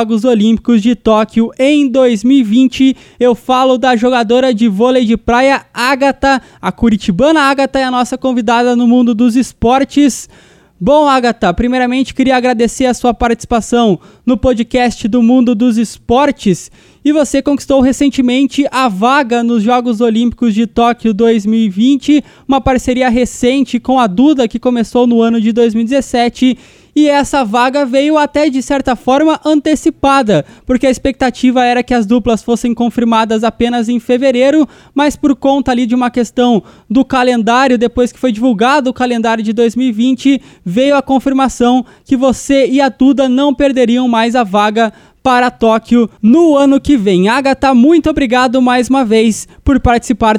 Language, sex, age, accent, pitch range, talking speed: Portuguese, male, 20-39, Brazilian, 235-270 Hz, 150 wpm